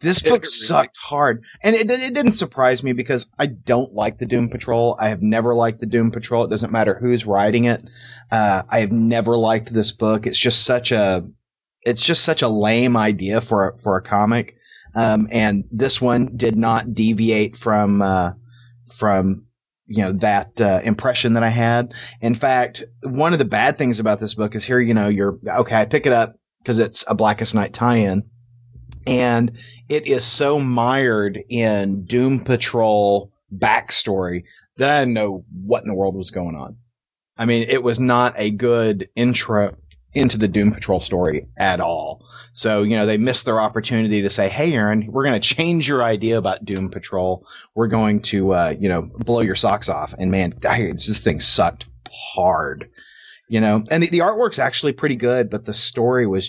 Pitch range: 105-125 Hz